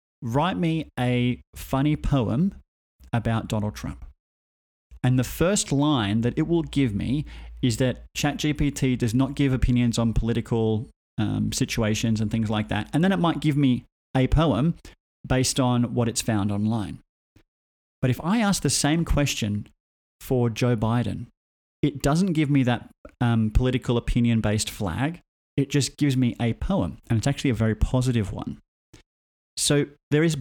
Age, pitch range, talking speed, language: 30-49, 115-145 Hz, 160 wpm, English